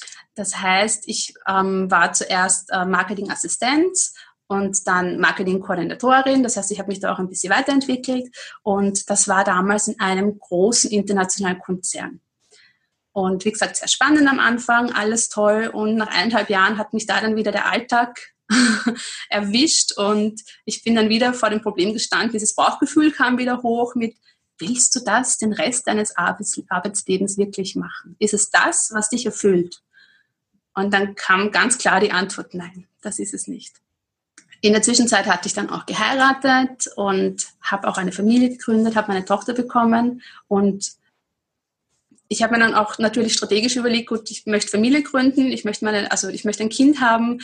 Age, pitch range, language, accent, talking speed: 30-49, 195-240 Hz, German, German, 170 wpm